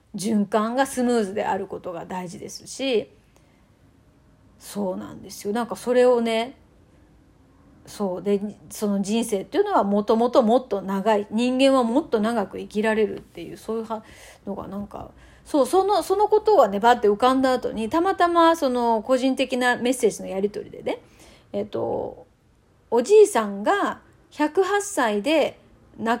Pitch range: 210-280 Hz